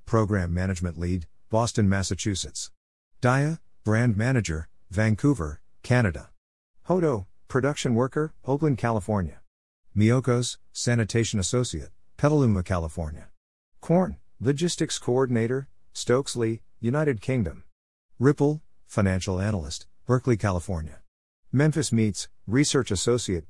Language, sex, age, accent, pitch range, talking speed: English, male, 50-69, American, 85-125 Hz, 90 wpm